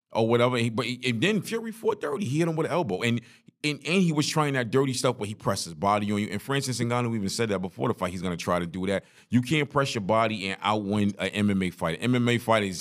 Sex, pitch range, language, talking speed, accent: male, 100-130 Hz, English, 265 wpm, American